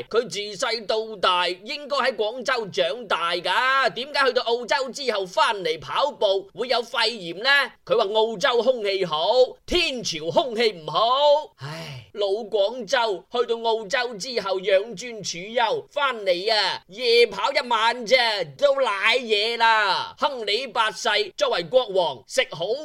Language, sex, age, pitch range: Chinese, male, 20-39, 200-295 Hz